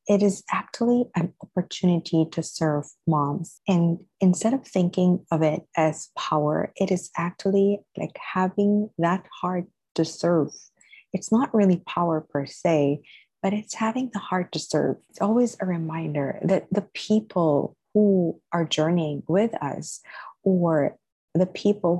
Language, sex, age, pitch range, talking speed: English, female, 30-49, 170-200 Hz, 145 wpm